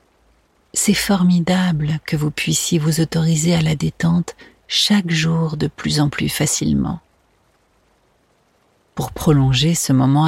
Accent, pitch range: French, 145-180 Hz